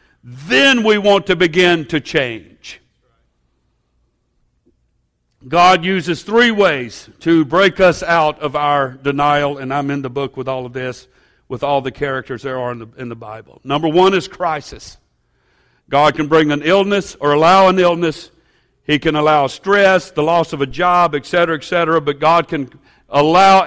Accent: American